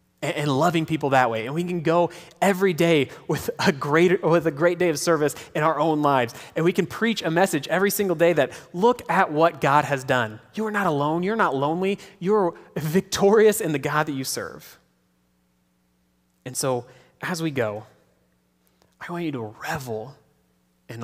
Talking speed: 185 wpm